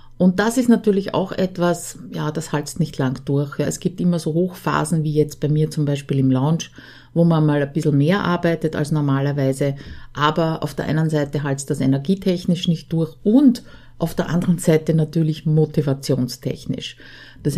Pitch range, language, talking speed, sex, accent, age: 150-180 Hz, German, 180 wpm, female, Austrian, 50-69